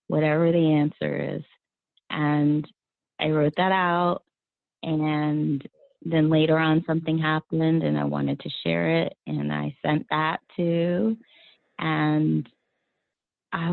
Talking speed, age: 120 wpm, 30-49